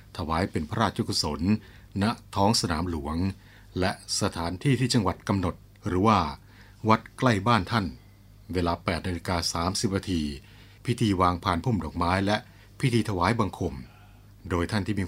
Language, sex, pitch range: Thai, male, 90-110 Hz